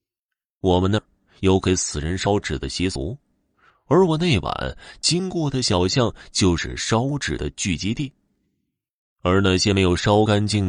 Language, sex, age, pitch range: Chinese, male, 20-39, 85-120 Hz